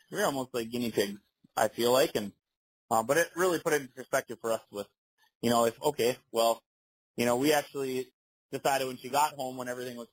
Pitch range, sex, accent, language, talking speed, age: 115-140 Hz, male, American, English, 220 wpm, 30-49